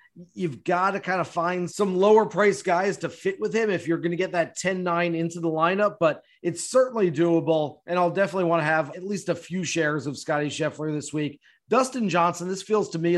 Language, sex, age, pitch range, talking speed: English, male, 30-49, 165-195 Hz, 230 wpm